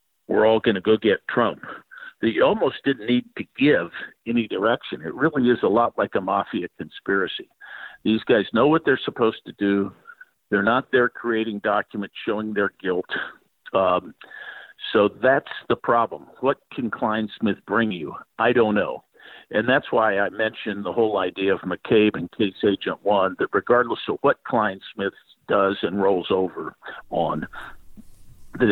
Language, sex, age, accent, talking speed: English, male, 50-69, American, 160 wpm